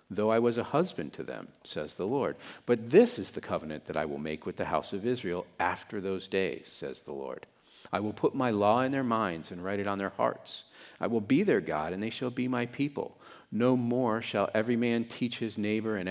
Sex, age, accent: male, 50-69, American